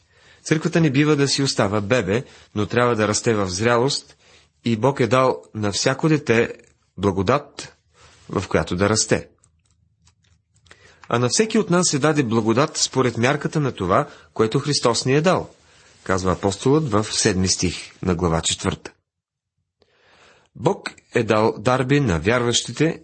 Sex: male